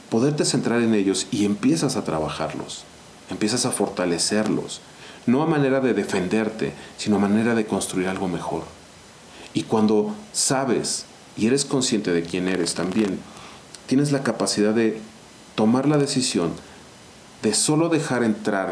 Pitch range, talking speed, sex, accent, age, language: 95-135 Hz, 140 wpm, male, Mexican, 40-59, Spanish